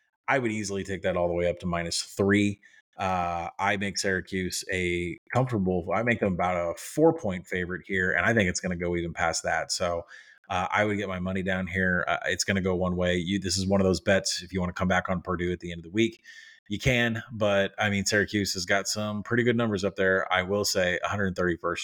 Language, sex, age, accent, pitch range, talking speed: English, male, 30-49, American, 90-105 Hz, 250 wpm